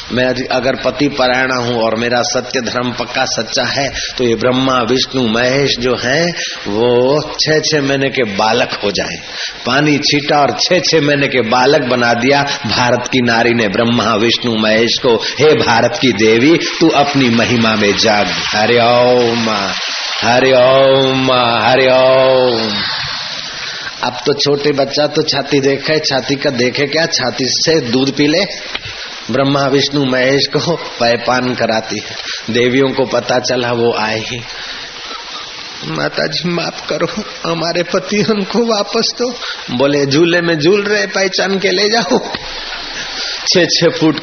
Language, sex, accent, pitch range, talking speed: Hindi, male, native, 120-150 Hz, 140 wpm